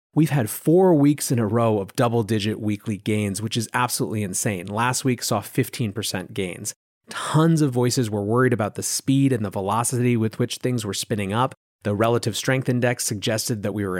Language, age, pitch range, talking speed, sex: English, 30-49, 105-140 Hz, 195 wpm, male